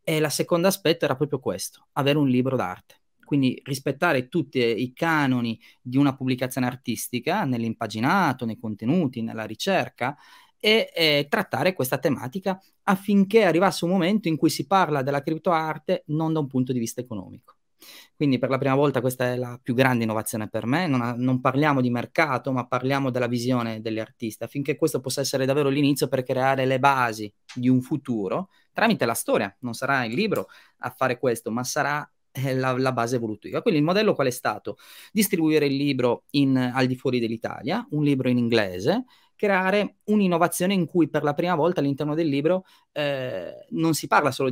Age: 30-49